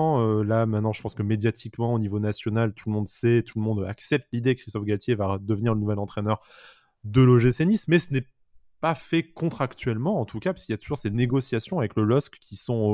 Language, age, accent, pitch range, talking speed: French, 20-39, French, 100-120 Hz, 230 wpm